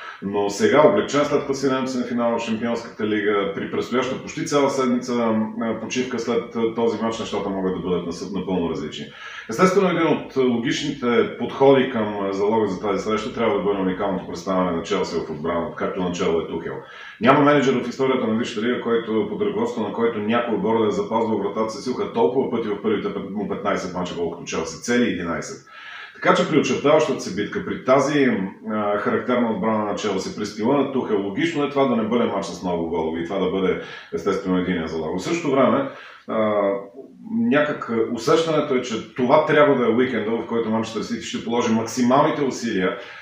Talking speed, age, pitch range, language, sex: 185 wpm, 40-59, 100-130 Hz, Bulgarian, male